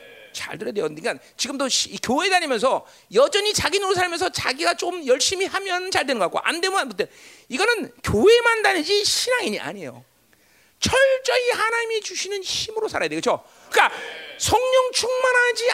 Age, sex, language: 40-59, male, Korean